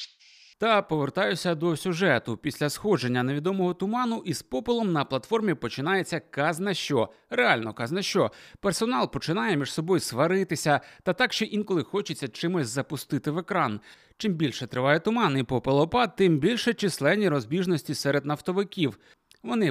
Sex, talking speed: male, 135 wpm